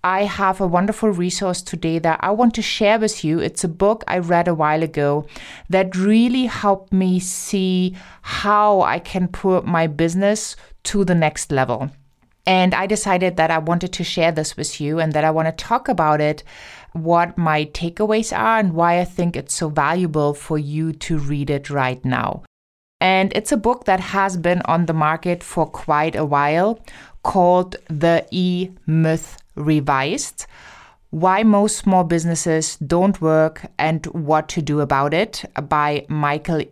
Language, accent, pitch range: English, German, 150-185 Hz